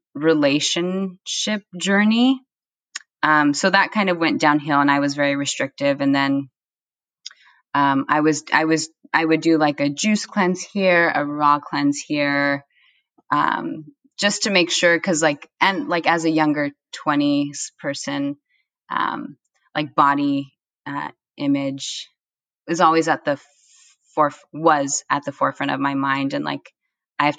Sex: female